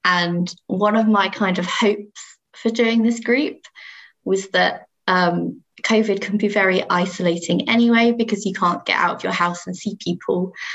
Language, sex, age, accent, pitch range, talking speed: English, female, 20-39, British, 185-225 Hz, 175 wpm